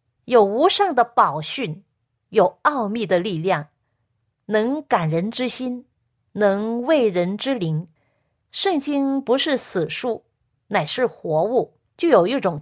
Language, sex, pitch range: Chinese, female, 175-260 Hz